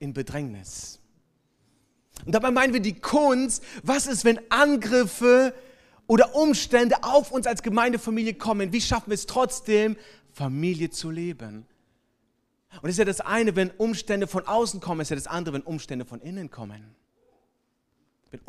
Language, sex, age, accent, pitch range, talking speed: German, male, 30-49, German, 135-215 Hz, 160 wpm